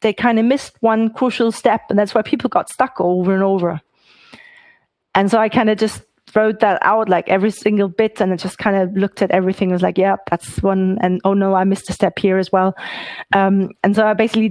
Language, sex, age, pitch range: English, female, 30-49, 190-220 Hz